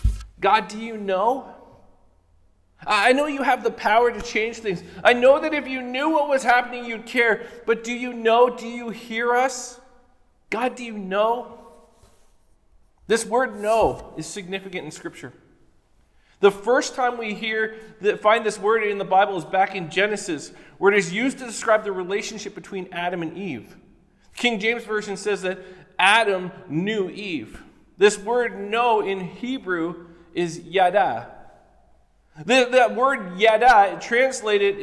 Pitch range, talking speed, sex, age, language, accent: 185-240 Hz, 155 wpm, male, 40-59, English, American